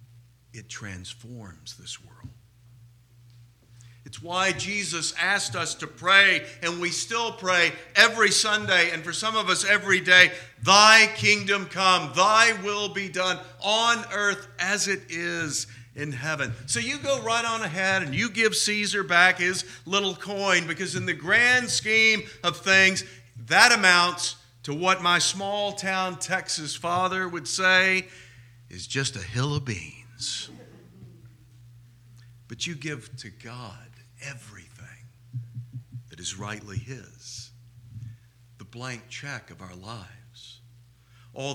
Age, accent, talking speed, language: 50-69, American, 135 wpm, English